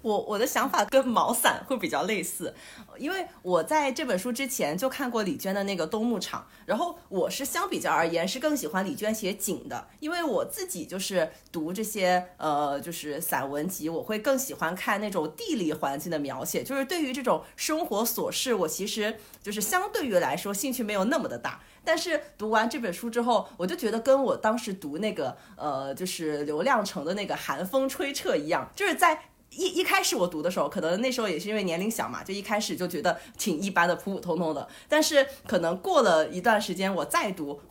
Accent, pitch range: native, 175-270 Hz